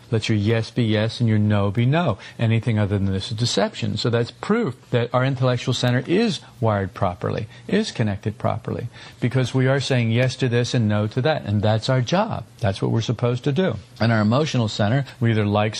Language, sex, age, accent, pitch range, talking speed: English, male, 50-69, American, 115-135 Hz, 215 wpm